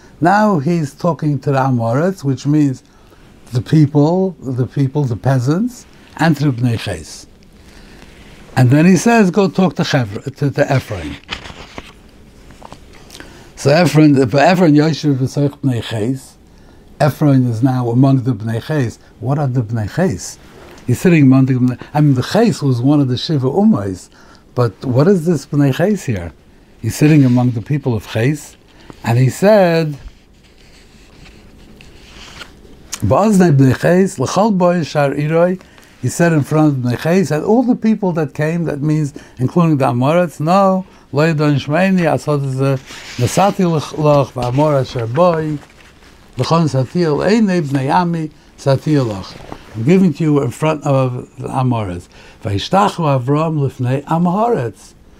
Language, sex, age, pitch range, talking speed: English, male, 60-79, 125-165 Hz, 110 wpm